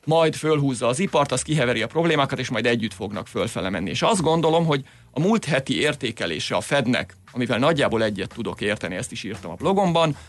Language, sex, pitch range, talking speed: Hungarian, male, 120-160 Hz, 200 wpm